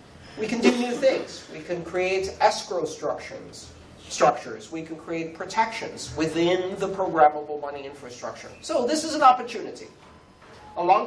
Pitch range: 150-225 Hz